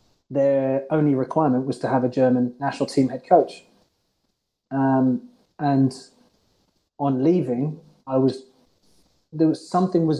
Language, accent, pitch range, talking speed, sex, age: English, British, 125-155 Hz, 130 wpm, male, 30-49